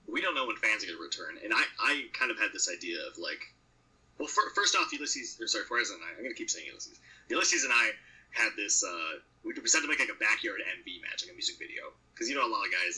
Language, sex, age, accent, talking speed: English, male, 30-49, American, 285 wpm